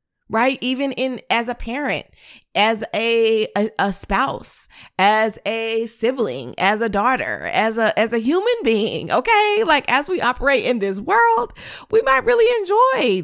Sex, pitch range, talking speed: female, 215-265 Hz, 160 wpm